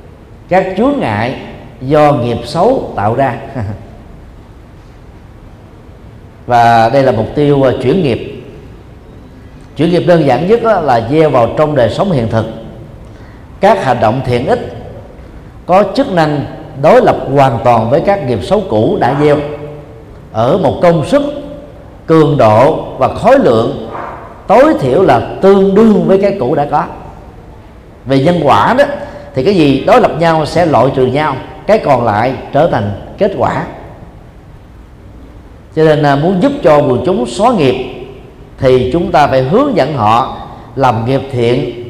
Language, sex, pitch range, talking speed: Vietnamese, male, 120-170 Hz, 155 wpm